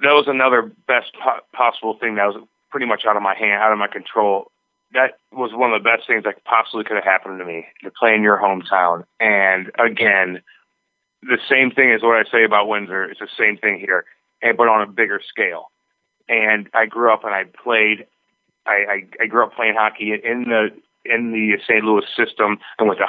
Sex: male